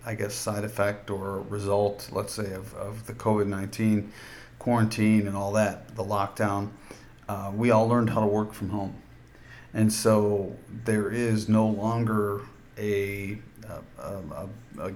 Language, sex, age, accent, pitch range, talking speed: English, male, 40-59, American, 100-115 Hz, 150 wpm